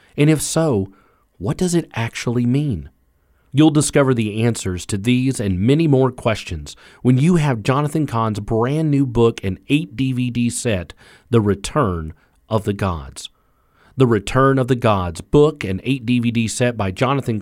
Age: 40-59